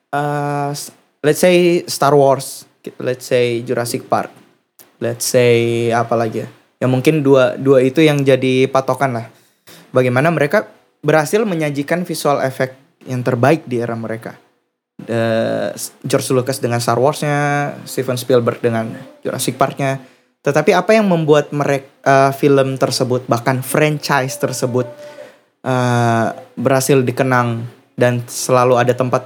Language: Indonesian